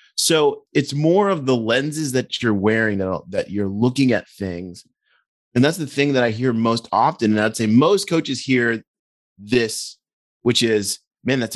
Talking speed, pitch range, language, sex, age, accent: 180 wpm, 110-140 Hz, English, male, 30-49, American